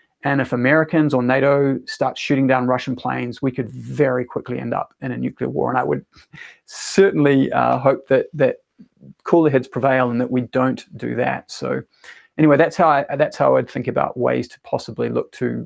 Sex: male